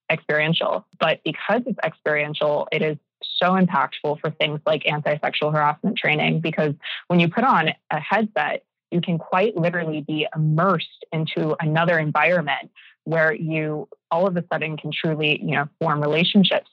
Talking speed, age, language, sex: 155 wpm, 20-39, English, female